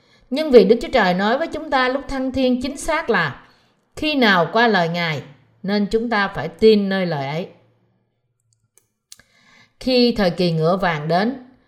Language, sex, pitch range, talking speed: Vietnamese, female, 170-245 Hz, 175 wpm